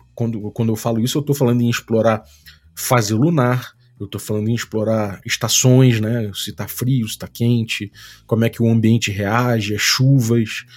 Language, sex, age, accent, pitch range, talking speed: Portuguese, male, 20-39, Brazilian, 115-145 Hz, 185 wpm